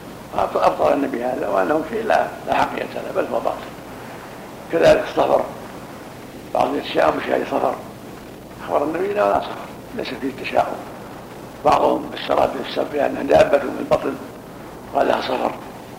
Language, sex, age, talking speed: Arabic, male, 60-79, 135 wpm